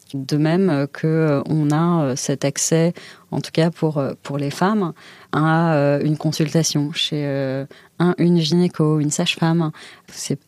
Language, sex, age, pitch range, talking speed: French, female, 30-49, 140-170 Hz, 160 wpm